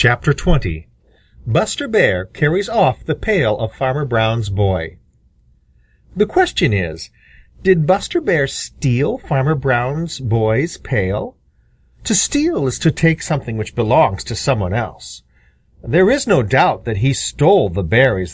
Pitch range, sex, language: 95-160 Hz, male, Japanese